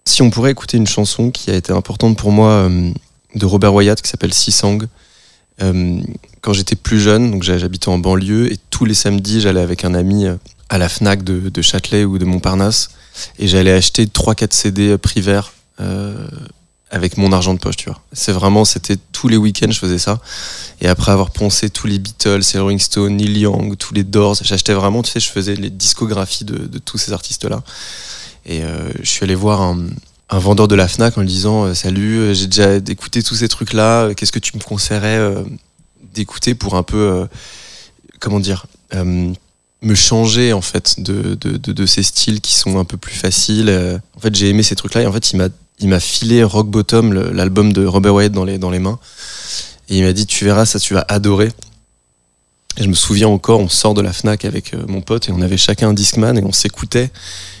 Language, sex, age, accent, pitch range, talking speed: French, male, 20-39, French, 95-110 Hz, 220 wpm